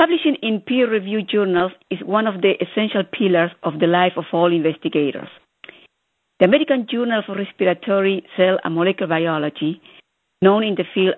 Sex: female